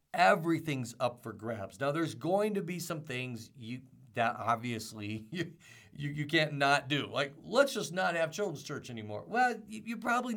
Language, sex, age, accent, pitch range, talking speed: English, male, 50-69, American, 135-180 Hz, 185 wpm